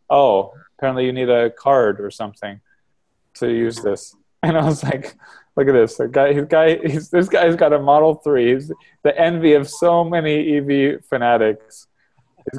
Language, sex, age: English, male, 20-39